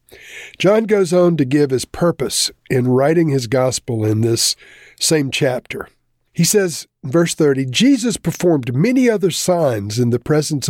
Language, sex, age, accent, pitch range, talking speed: English, male, 50-69, American, 130-175 Hz, 150 wpm